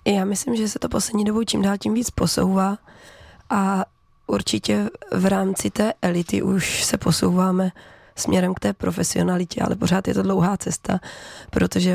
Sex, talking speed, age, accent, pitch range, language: female, 160 wpm, 20-39, native, 165-195 Hz, Czech